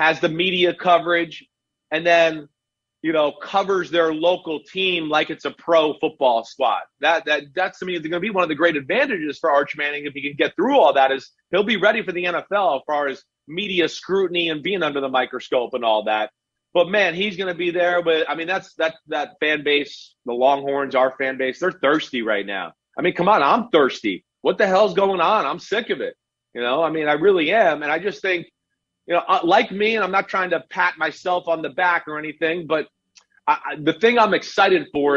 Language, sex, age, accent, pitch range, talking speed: English, male, 30-49, American, 150-195 Hz, 230 wpm